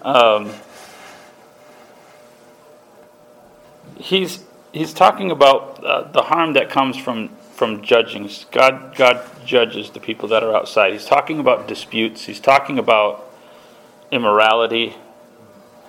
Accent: American